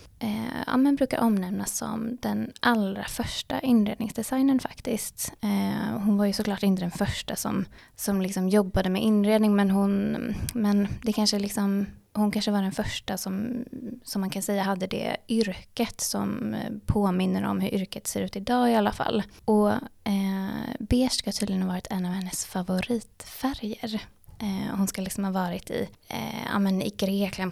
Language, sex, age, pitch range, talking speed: Swedish, female, 20-39, 190-220 Hz, 170 wpm